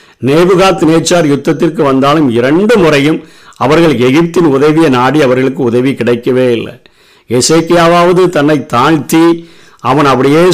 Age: 50-69